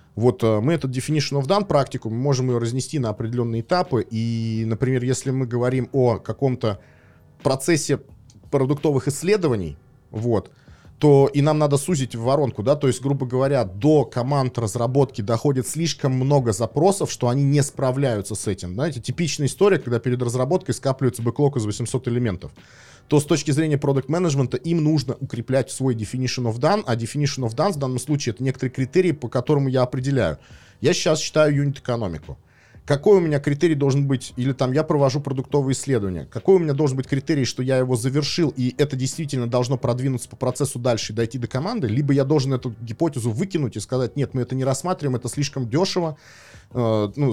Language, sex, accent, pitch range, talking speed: Russian, male, native, 120-145 Hz, 180 wpm